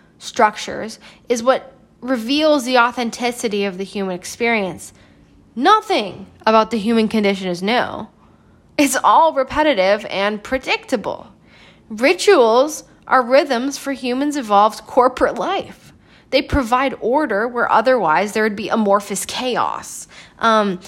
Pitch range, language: 200-260 Hz, English